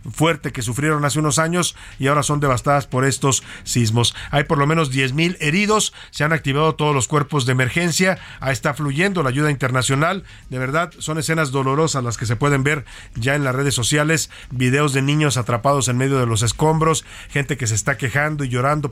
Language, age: Spanish, 40-59